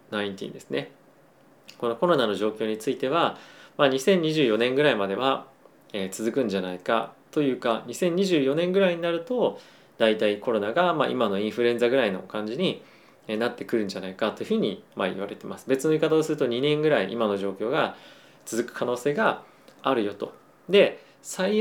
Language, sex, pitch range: Japanese, male, 105-150 Hz